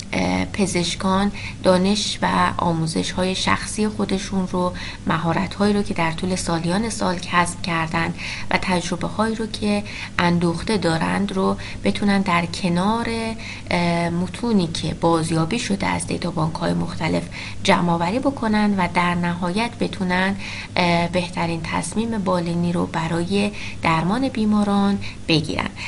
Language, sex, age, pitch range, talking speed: Persian, female, 20-39, 165-205 Hz, 110 wpm